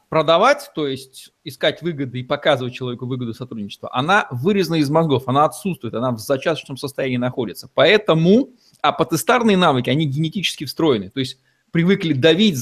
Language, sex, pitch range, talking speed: Russian, male, 140-180 Hz, 145 wpm